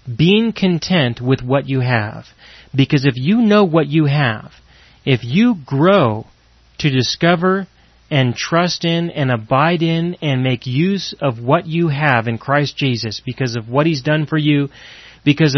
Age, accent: 30-49, American